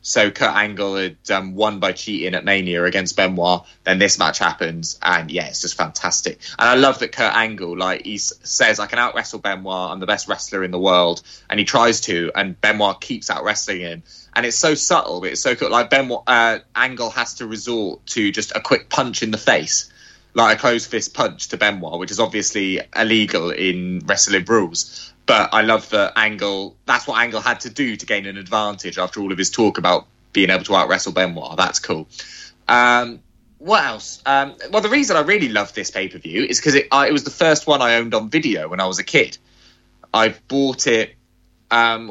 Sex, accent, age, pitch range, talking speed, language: male, British, 20-39, 95-115 Hz, 210 wpm, English